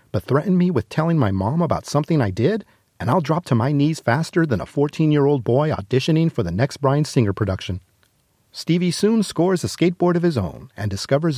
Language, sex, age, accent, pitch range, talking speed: English, male, 40-59, American, 120-170 Hz, 200 wpm